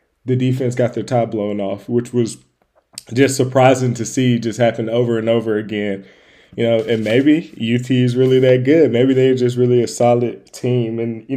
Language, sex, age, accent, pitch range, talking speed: English, male, 20-39, American, 115-130 Hz, 195 wpm